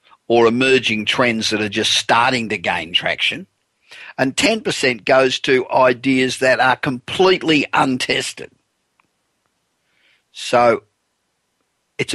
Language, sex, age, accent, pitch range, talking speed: English, male, 50-69, Australian, 115-140 Hz, 105 wpm